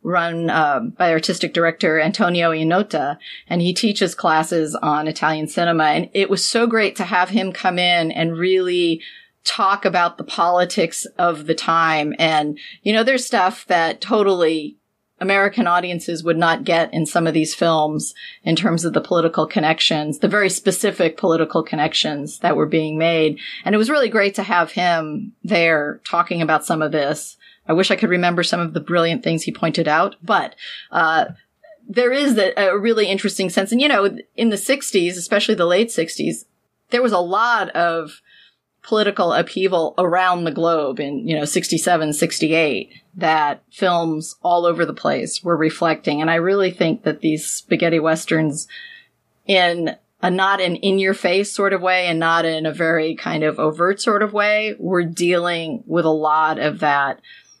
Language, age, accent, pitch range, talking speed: English, 30-49, American, 160-195 Hz, 175 wpm